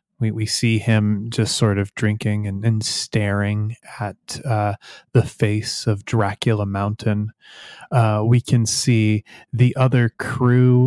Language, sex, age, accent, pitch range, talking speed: English, male, 20-39, American, 105-125 Hz, 140 wpm